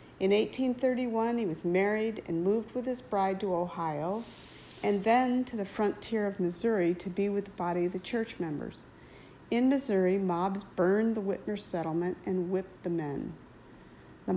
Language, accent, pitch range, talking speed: English, American, 180-225 Hz, 165 wpm